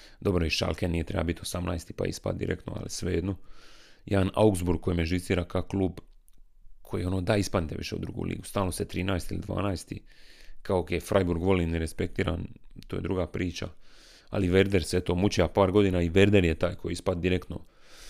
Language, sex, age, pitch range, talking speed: Croatian, male, 30-49, 85-100 Hz, 190 wpm